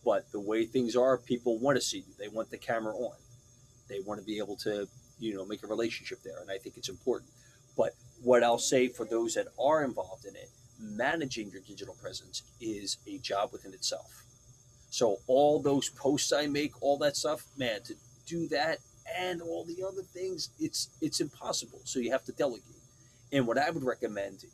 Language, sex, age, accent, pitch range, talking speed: English, male, 30-49, American, 115-130 Hz, 205 wpm